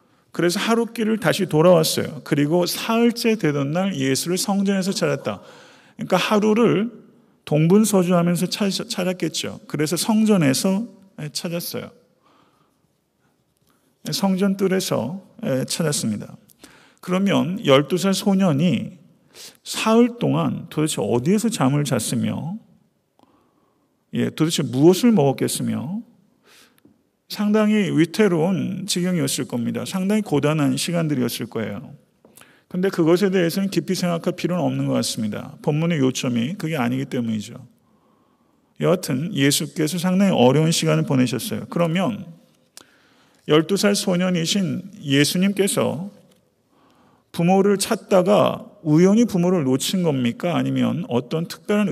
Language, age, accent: Korean, 40-59, native